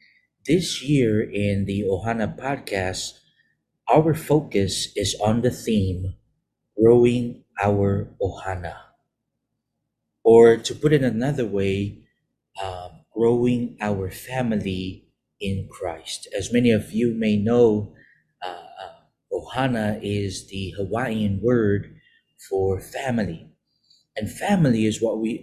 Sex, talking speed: male, 110 wpm